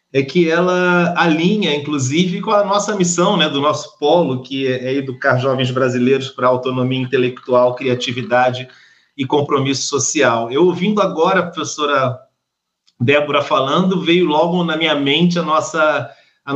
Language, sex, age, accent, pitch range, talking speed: Portuguese, male, 40-59, Brazilian, 140-175 Hz, 140 wpm